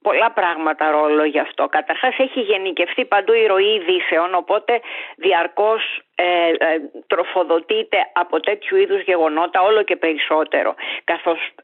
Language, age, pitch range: Greek, 40-59, 160-225 Hz